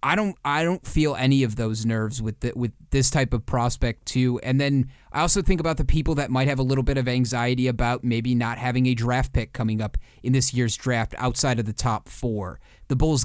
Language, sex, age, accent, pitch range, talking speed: English, male, 30-49, American, 110-135 Hz, 240 wpm